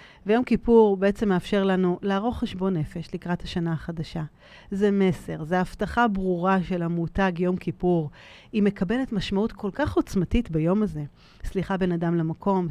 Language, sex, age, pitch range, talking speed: Hebrew, female, 40-59, 165-205 Hz, 150 wpm